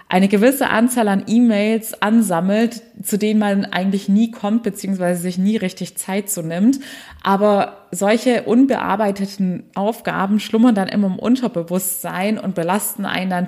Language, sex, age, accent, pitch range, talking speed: German, female, 20-39, German, 180-215 Hz, 140 wpm